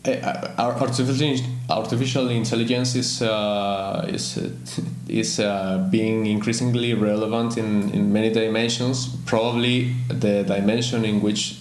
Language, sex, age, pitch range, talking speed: English, male, 20-39, 105-130 Hz, 110 wpm